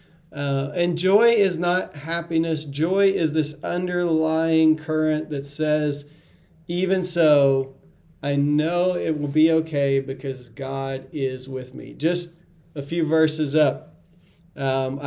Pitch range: 145-170 Hz